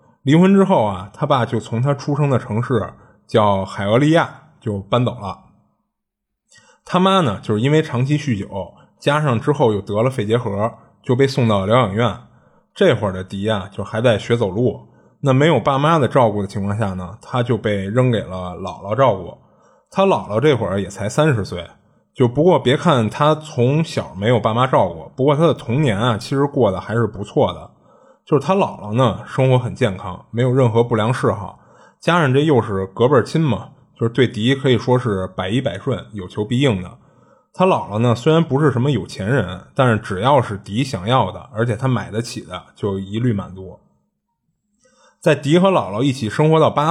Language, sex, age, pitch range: Chinese, male, 20-39, 100-140 Hz